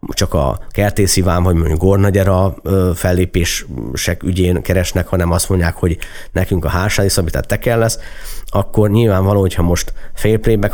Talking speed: 140 wpm